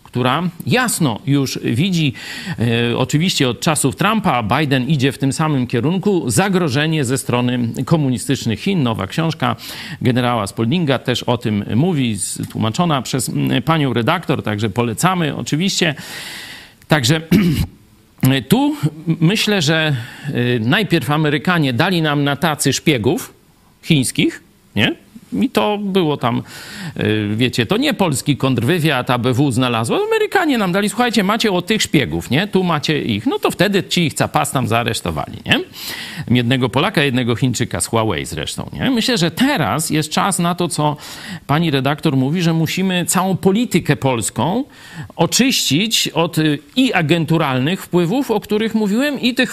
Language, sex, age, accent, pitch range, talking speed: Polish, male, 40-59, native, 130-185 Hz, 135 wpm